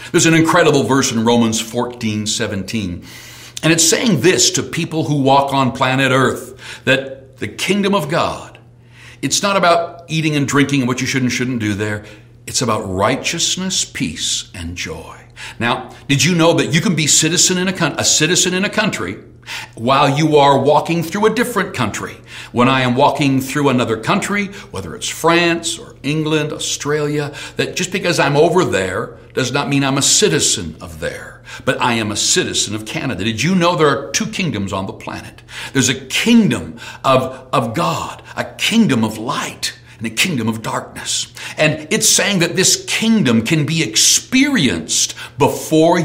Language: English